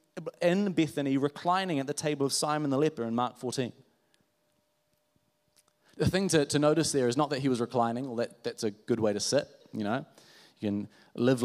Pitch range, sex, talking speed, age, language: 135-180 Hz, male, 200 wpm, 30-49, English